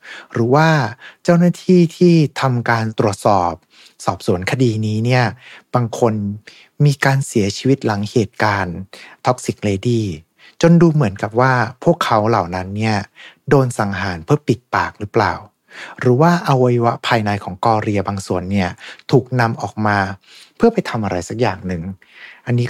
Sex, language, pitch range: male, Thai, 95-120 Hz